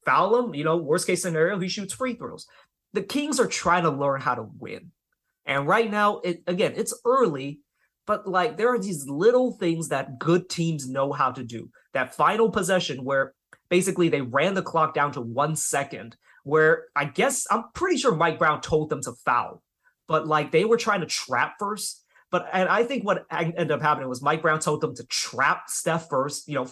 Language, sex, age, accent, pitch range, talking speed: English, male, 30-49, American, 145-190 Hz, 205 wpm